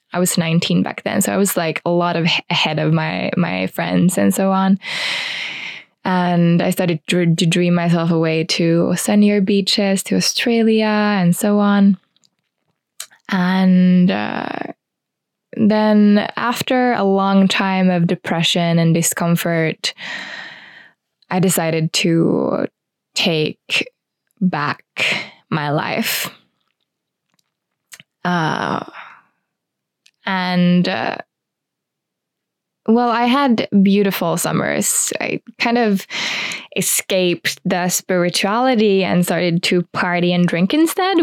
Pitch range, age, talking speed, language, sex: 165-205 Hz, 20-39, 105 wpm, English, female